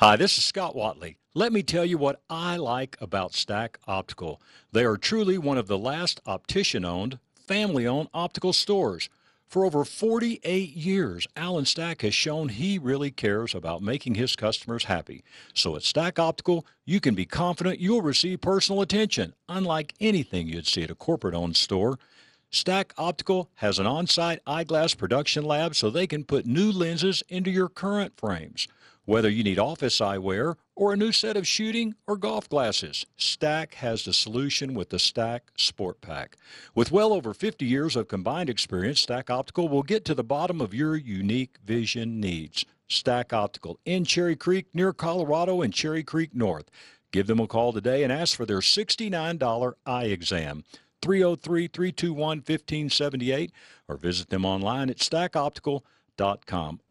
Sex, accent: male, American